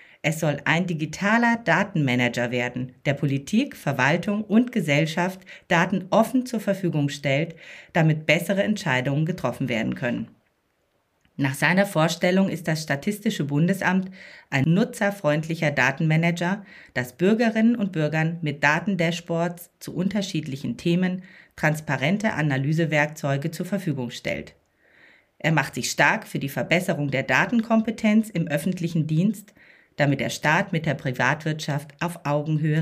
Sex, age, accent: female, 40-59, German